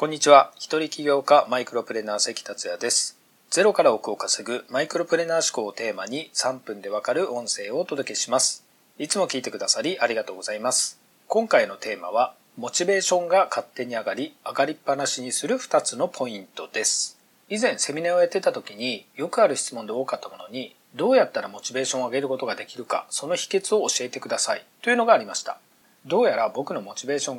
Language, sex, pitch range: Japanese, male, 145-215 Hz